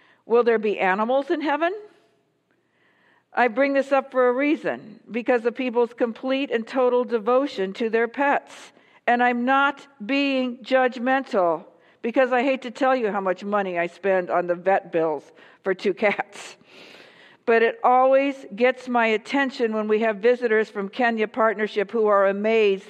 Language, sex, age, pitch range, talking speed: English, female, 50-69, 195-245 Hz, 160 wpm